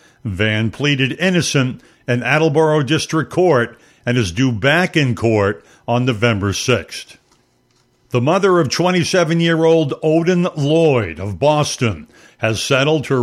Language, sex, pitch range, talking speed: English, male, 120-155 Hz, 125 wpm